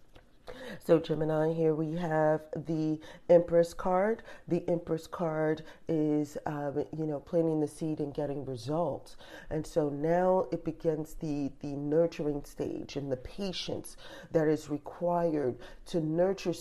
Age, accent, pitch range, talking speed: 40-59, American, 150-175 Hz, 135 wpm